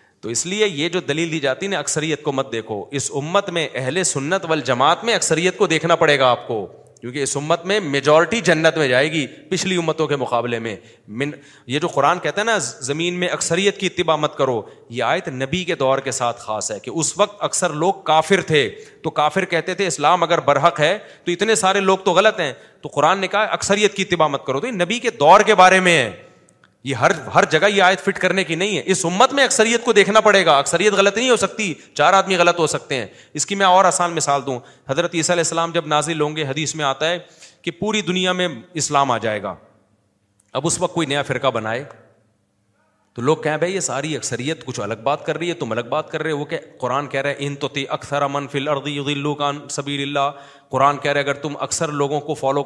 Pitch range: 140-180 Hz